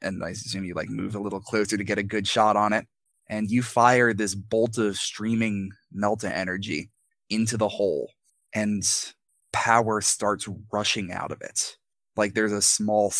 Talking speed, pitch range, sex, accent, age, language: 175 wpm, 100-110 Hz, male, American, 20-39, English